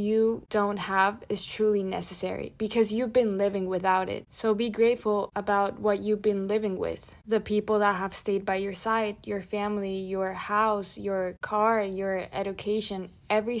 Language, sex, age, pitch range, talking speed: English, female, 20-39, 195-215 Hz, 170 wpm